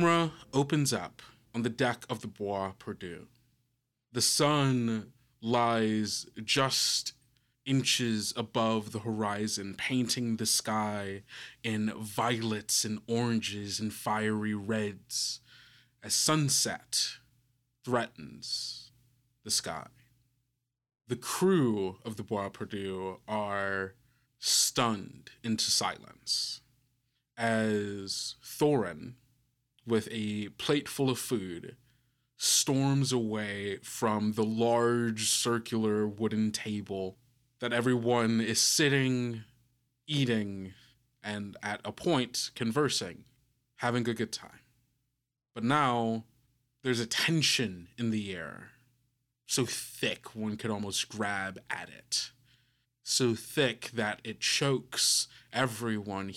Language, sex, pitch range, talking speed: English, male, 110-125 Hz, 100 wpm